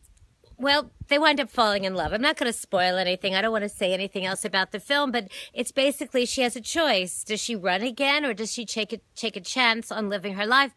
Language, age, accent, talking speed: English, 40-59, American, 250 wpm